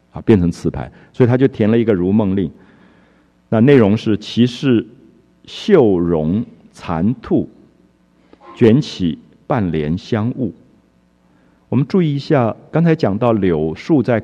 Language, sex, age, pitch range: Japanese, male, 50-69, 95-130 Hz